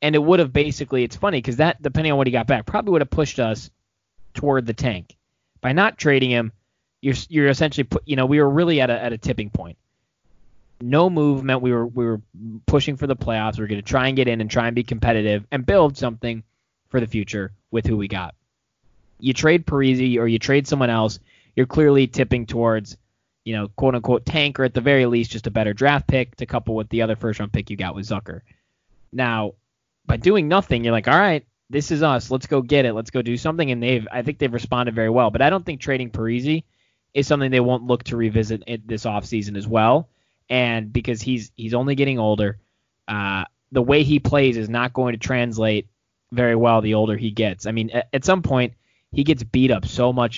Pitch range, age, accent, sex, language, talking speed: 110-135 Hz, 20-39, American, male, English, 225 wpm